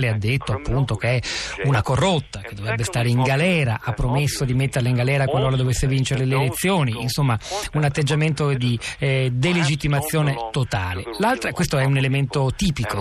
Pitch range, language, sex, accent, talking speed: 120-155 Hz, Italian, male, native, 165 wpm